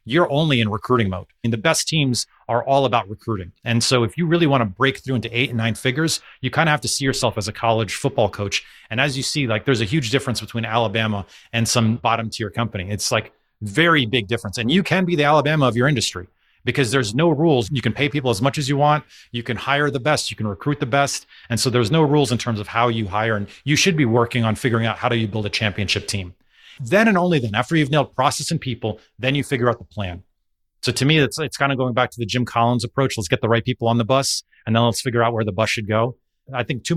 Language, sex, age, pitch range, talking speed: English, male, 30-49, 110-140 Hz, 275 wpm